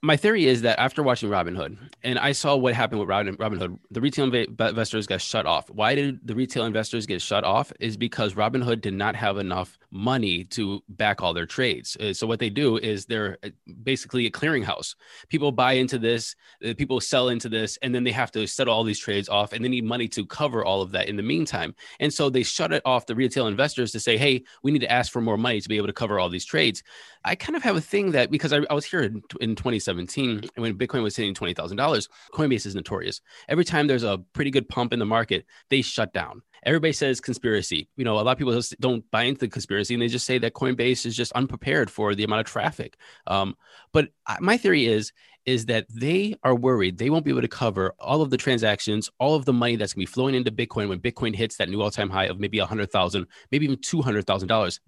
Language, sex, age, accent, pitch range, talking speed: English, male, 20-39, American, 105-130 Hz, 235 wpm